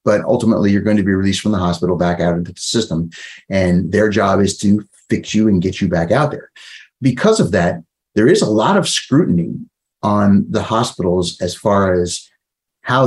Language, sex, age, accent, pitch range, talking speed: English, male, 30-49, American, 95-115 Hz, 200 wpm